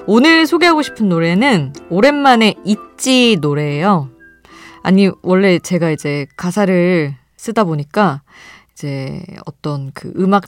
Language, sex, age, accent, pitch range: Korean, female, 20-39, native, 155-225 Hz